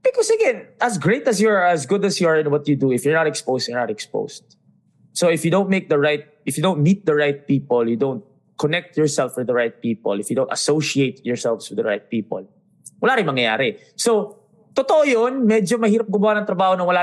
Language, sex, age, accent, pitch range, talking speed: English, male, 20-39, Filipino, 150-205 Hz, 235 wpm